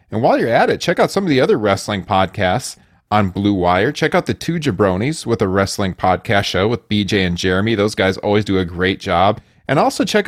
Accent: American